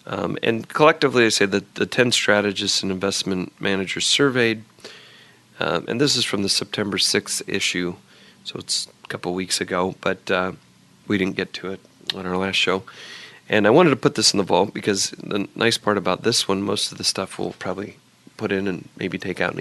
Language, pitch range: English, 90-110 Hz